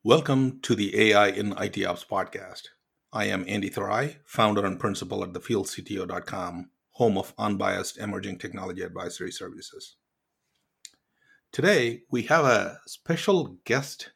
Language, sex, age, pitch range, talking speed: English, male, 50-69, 100-125 Hz, 125 wpm